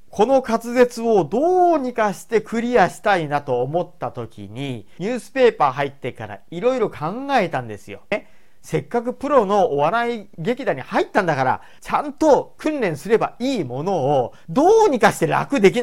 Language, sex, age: Japanese, male, 40-59